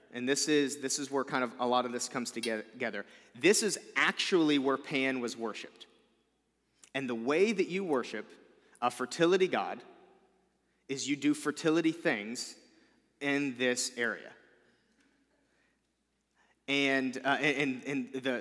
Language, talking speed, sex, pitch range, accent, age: English, 140 wpm, male, 130-170 Hz, American, 30-49